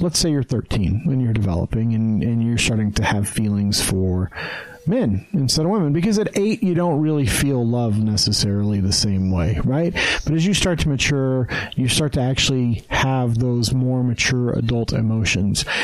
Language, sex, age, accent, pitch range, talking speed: English, male, 40-59, American, 110-150 Hz, 180 wpm